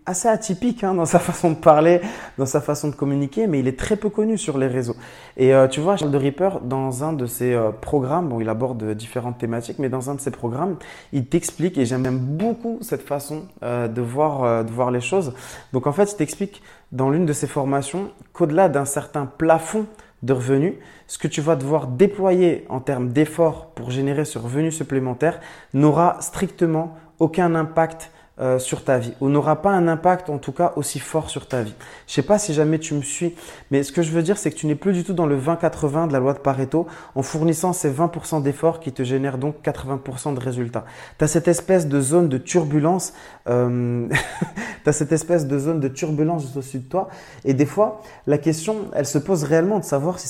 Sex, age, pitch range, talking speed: male, 20-39, 135-175 Hz, 225 wpm